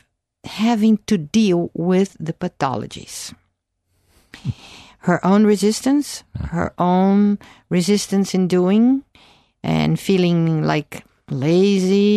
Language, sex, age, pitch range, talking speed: English, female, 50-69, 150-185 Hz, 90 wpm